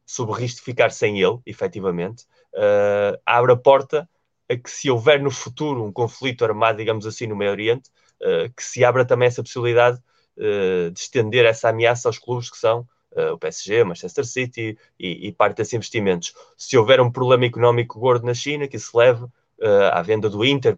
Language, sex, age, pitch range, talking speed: Portuguese, male, 20-39, 110-140 Hz, 195 wpm